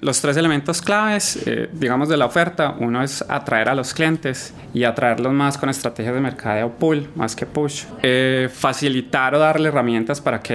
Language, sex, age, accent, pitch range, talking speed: Spanish, male, 20-39, Colombian, 115-140 Hz, 195 wpm